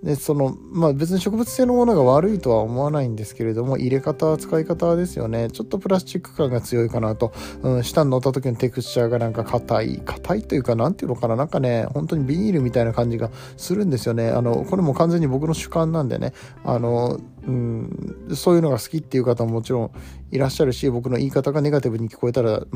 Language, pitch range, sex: Japanese, 115-145 Hz, male